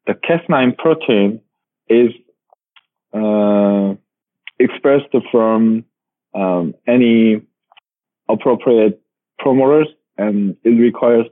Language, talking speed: English, 75 wpm